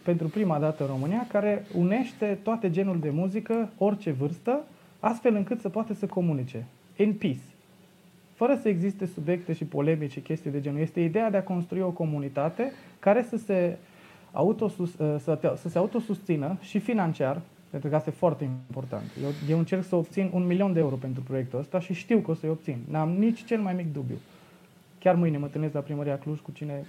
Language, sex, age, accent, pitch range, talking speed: Romanian, male, 20-39, native, 145-190 Hz, 190 wpm